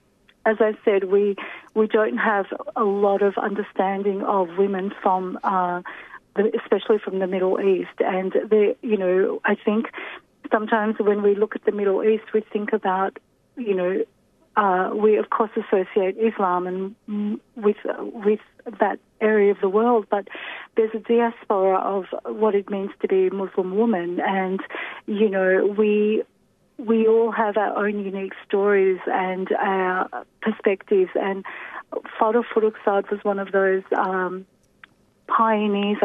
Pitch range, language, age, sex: 195-225 Hz, English, 40-59, female